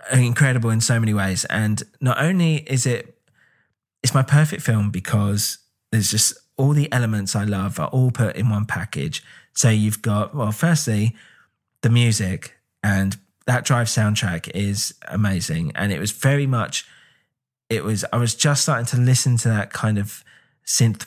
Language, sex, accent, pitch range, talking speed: English, male, British, 105-125 Hz, 170 wpm